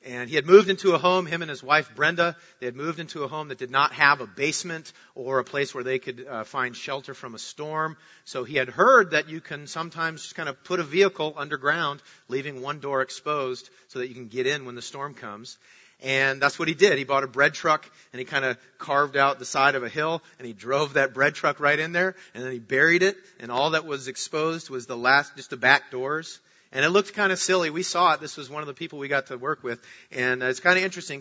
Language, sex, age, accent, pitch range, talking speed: English, male, 40-59, American, 130-165 Hz, 265 wpm